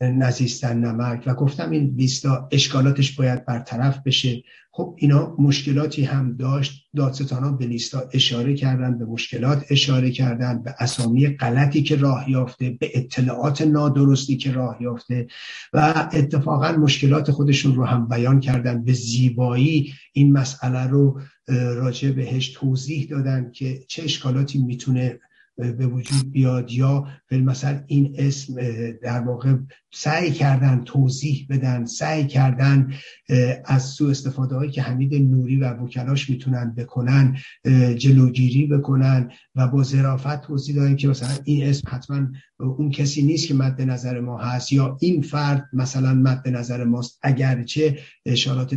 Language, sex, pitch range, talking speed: Persian, male, 125-140 Hz, 135 wpm